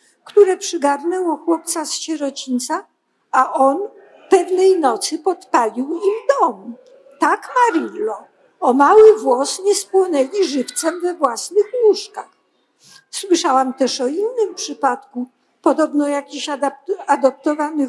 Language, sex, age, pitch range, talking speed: Polish, female, 50-69, 265-370 Hz, 105 wpm